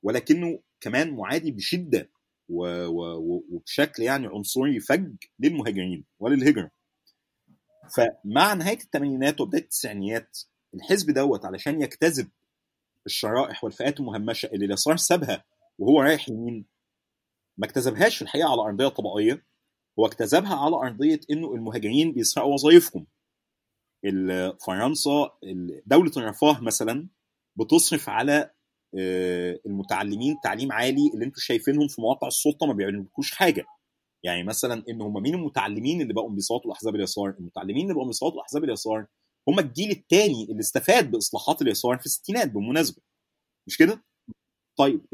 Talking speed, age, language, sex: 120 wpm, 30-49, Arabic, male